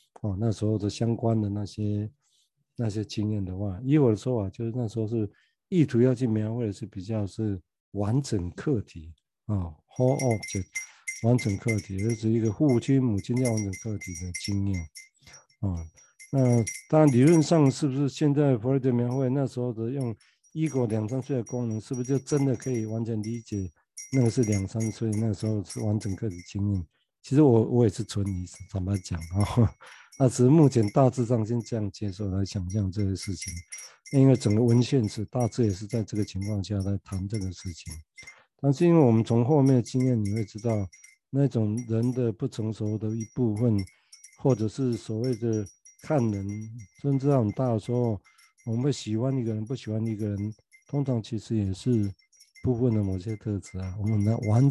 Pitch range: 105-125 Hz